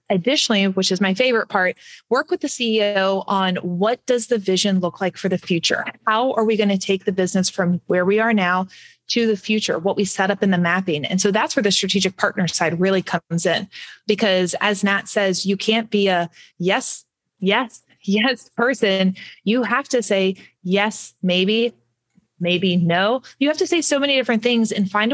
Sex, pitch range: female, 185-225 Hz